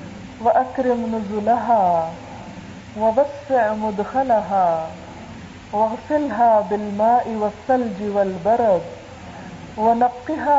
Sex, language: female, Urdu